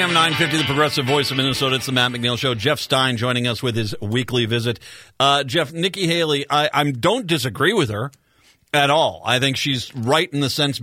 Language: English